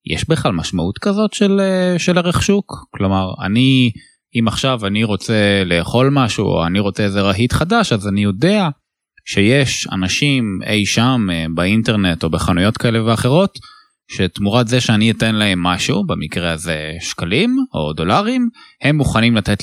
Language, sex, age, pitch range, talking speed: Hebrew, male, 20-39, 95-130 Hz, 145 wpm